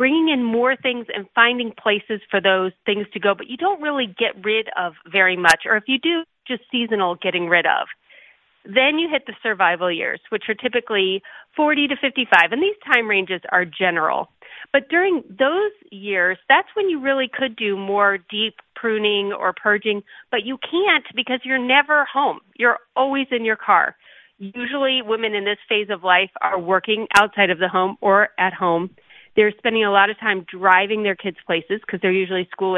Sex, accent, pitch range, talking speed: female, American, 190-255 Hz, 190 wpm